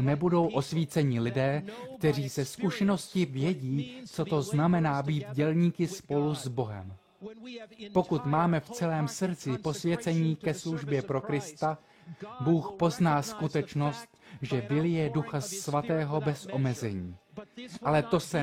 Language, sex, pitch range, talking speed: Slovak, male, 150-190 Hz, 125 wpm